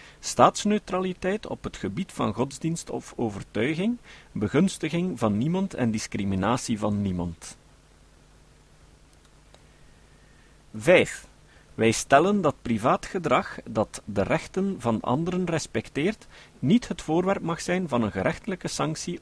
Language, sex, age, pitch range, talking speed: Dutch, male, 50-69, 110-180 Hz, 110 wpm